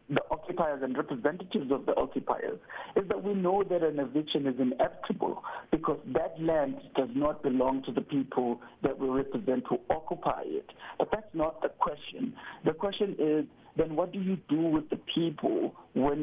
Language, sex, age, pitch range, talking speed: English, male, 60-79, 140-175 Hz, 175 wpm